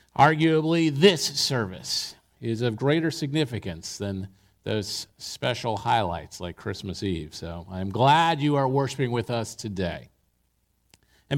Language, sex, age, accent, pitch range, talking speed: English, male, 40-59, American, 145-200 Hz, 125 wpm